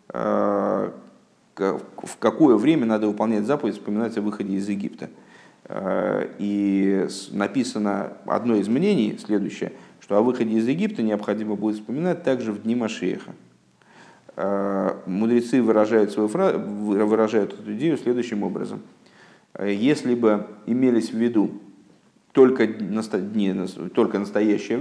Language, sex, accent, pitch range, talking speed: Russian, male, native, 100-125 Hz, 120 wpm